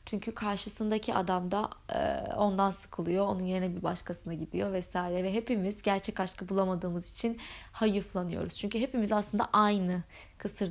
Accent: native